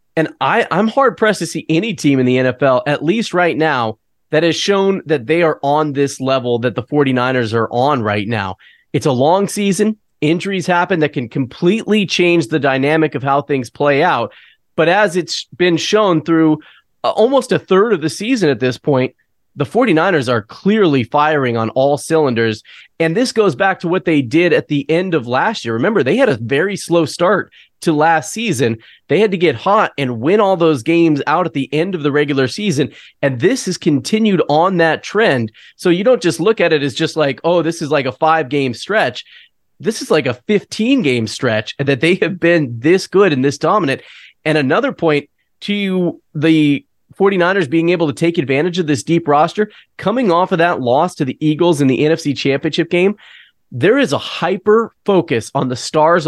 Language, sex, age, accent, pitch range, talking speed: English, male, 30-49, American, 140-185 Hz, 205 wpm